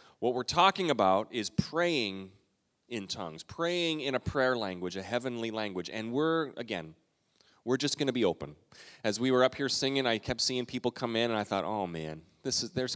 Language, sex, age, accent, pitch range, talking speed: English, male, 30-49, American, 105-135 Hz, 210 wpm